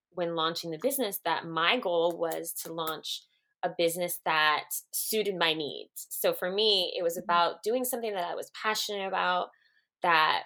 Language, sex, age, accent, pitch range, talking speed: English, female, 20-39, American, 170-240 Hz, 170 wpm